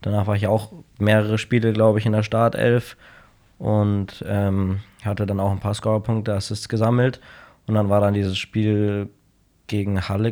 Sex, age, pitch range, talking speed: male, 20-39, 100-110 Hz, 170 wpm